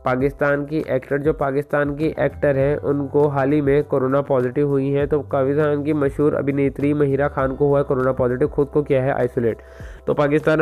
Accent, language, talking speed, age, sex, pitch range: native, Hindi, 190 wpm, 20-39, male, 140-150 Hz